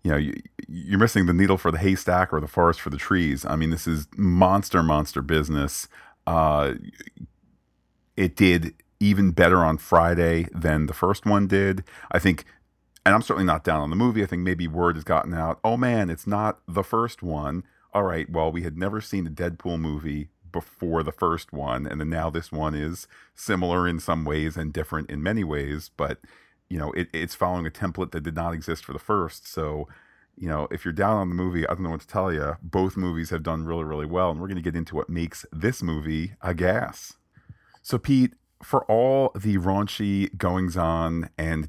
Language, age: English, 40-59